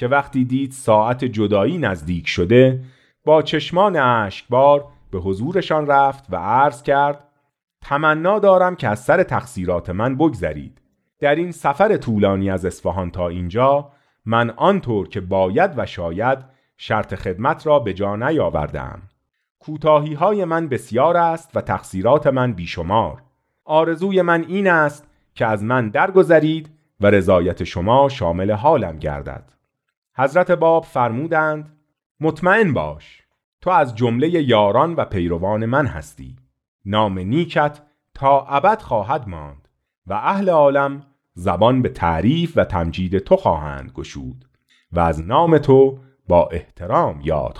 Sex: male